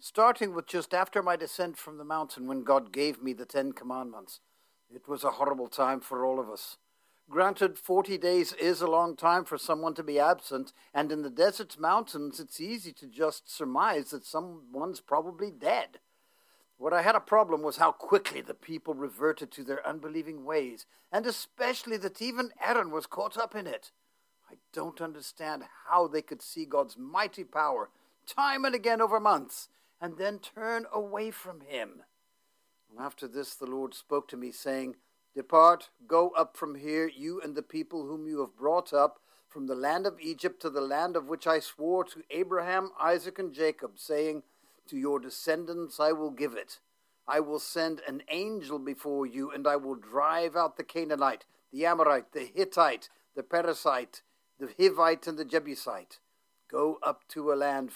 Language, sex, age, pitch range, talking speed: English, male, 60-79, 145-185 Hz, 180 wpm